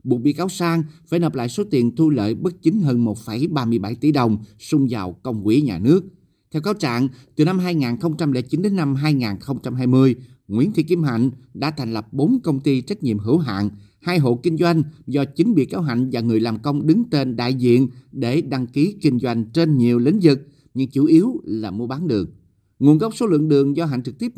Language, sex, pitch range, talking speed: Vietnamese, male, 120-160 Hz, 215 wpm